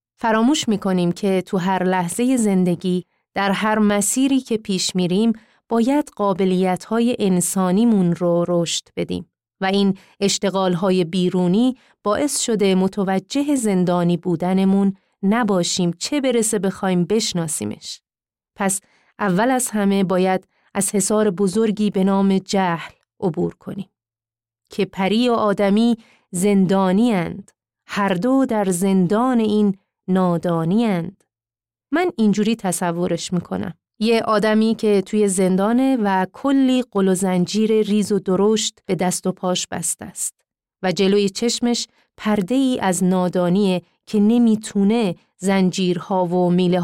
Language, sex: Persian, female